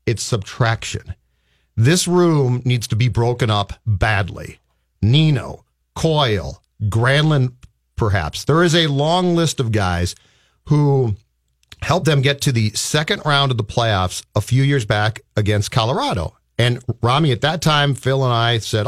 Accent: American